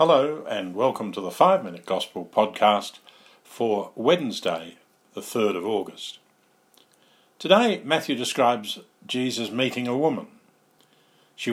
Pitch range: 110-160 Hz